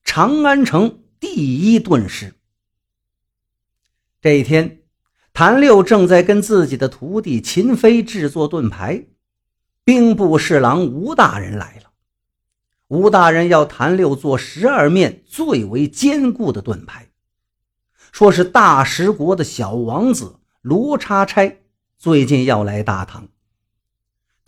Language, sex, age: Chinese, male, 50-69